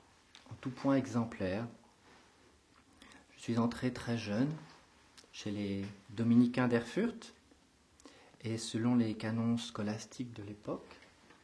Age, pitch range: 40-59, 105-130 Hz